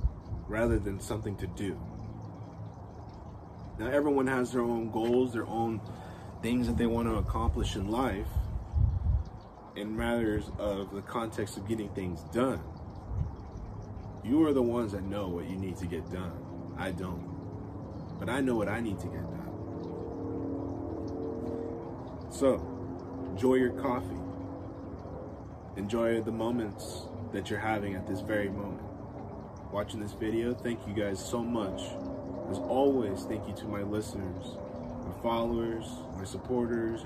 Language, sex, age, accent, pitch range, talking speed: English, male, 20-39, American, 95-115 Hz, 140 wpm